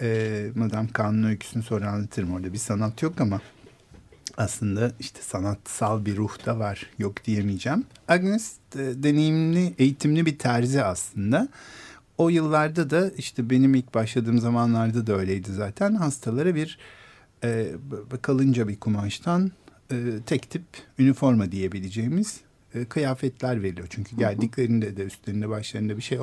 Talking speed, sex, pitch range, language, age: 135 wpm, male, 105-155 Hz, Turkish, 50-69